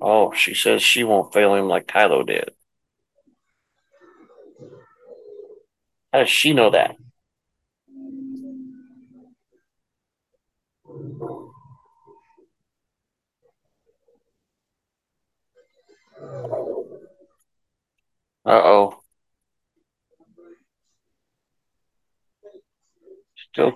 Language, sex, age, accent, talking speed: English, male, 50-69, American, 45 wpm